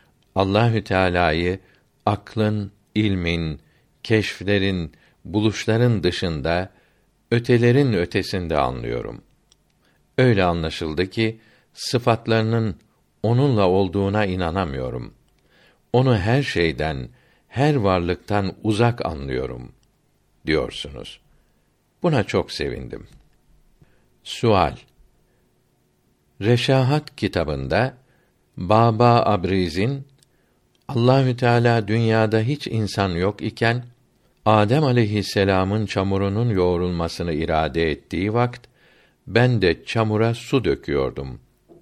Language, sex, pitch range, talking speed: Turkish, male, 90-120 Hz, 75 wpm